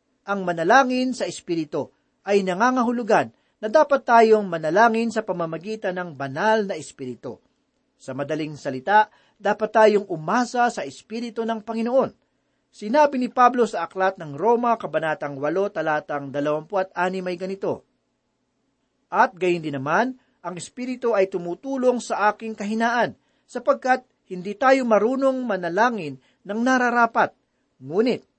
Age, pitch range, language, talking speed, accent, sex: 40-59, 170-235 Hz, Filipino, 125 wpm, native, male